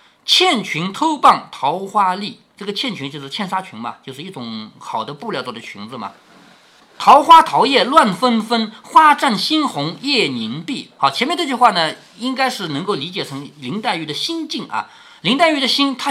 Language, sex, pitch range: Chinese, male, 185-310 Hz